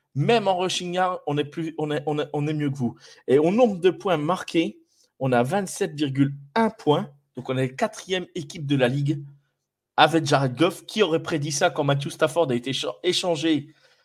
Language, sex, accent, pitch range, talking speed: French, male, French, 135-165 Hz, 200 wpm